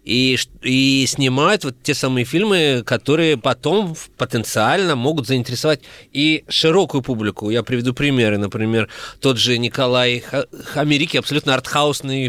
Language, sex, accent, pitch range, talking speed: Russian, male, native, 120-150 Hz, 120 wpm